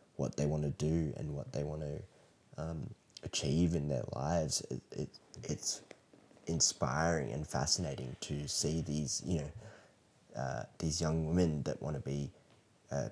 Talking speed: 145 wpm